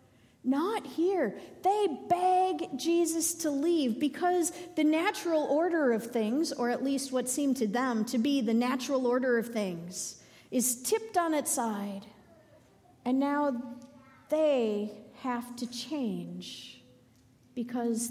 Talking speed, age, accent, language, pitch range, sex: 130 wpm, 50-69, American, English, 210-315 Hz, female